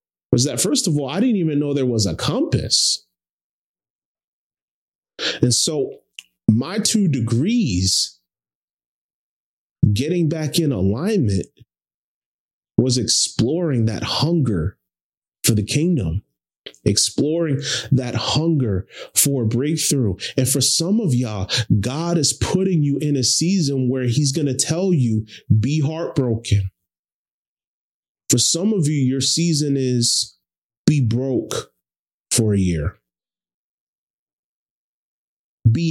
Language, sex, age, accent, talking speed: English, male, 30-49, American, 110 wpm